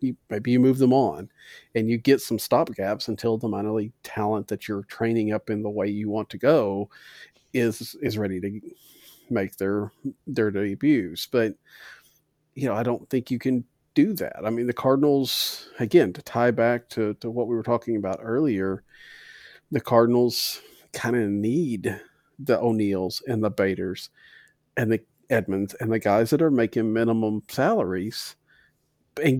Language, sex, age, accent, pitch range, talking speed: English, male, 40-59, American, 105-125 Hz, 170 wpm